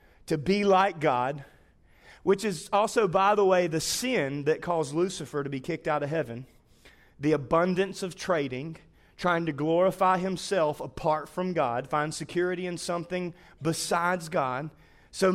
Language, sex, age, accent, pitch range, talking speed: English, male, 30-49, American, 150-195 Hz, 155 wpm